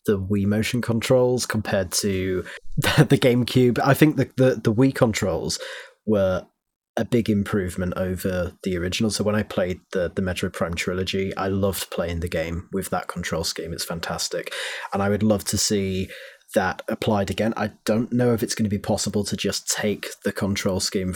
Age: 30-49